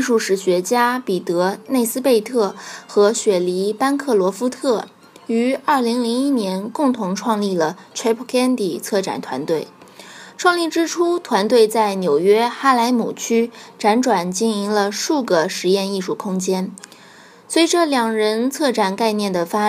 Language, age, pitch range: Chinese, 20-39, 200-265 Hz